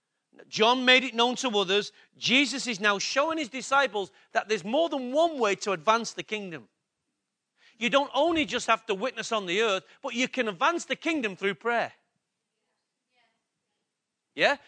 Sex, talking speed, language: male, 170 wpm, English